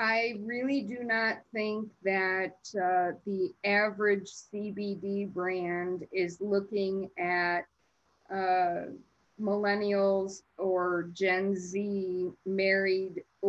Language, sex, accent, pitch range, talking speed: English, female, American, 175-200 Hz, 90 wpm